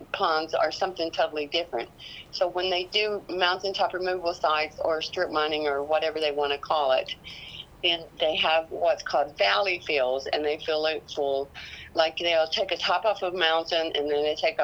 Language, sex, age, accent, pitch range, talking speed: English, female, 60-79, American, 150-180 Hz, 190 wpm